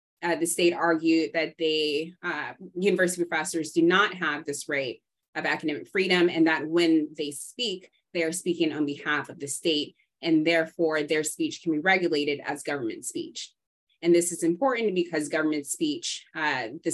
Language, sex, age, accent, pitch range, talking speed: English, female, 20-39, American, 155-180 Hz, 170 wpm